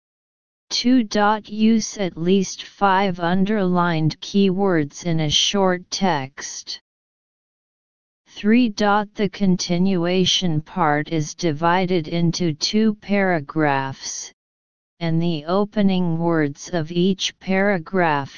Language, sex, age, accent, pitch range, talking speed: English, female, 40-59, American, 160-195 Hz, 90 wpm